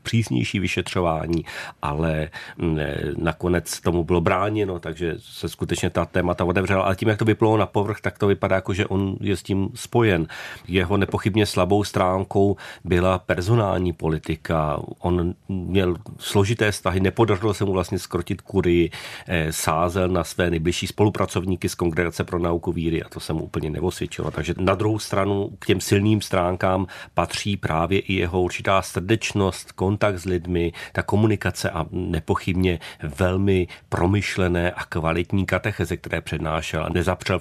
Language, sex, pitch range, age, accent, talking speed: Czech, male, 85-100 Hz, 40-59, native, 150 wpm